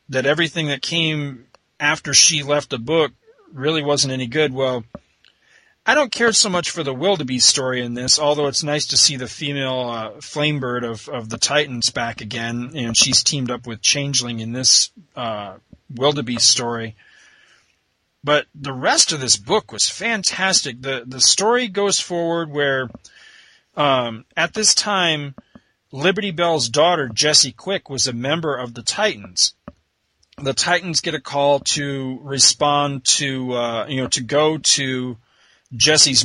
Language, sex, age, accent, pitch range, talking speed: English, male, 40-59, American, 120-150 Hz, 155 wpm